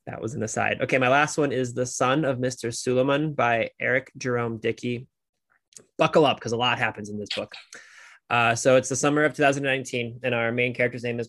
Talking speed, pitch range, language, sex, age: 215 wpm, 115-130 Hz, English, male, 20-39